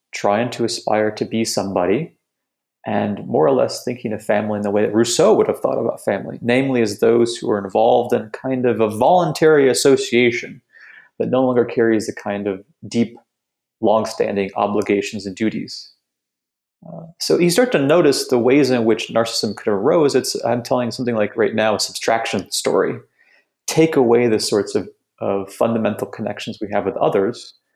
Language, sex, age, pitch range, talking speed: English, male, 30-49, 105-120 Hz, 175 wpm